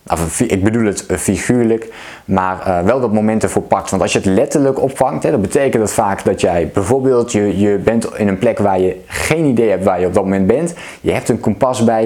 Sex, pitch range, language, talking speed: male, 105-130 Hz, Dutch, 220 wpm